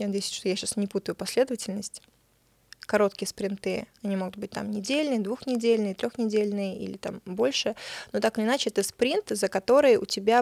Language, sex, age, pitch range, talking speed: Russian, female, 20-39, 200-230 Hz, 175 wpm